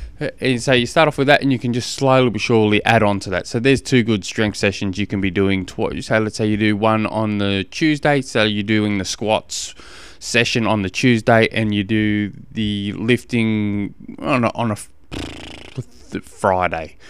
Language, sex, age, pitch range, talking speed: English, male, 20-39, 95-120 Hz, 205 wpm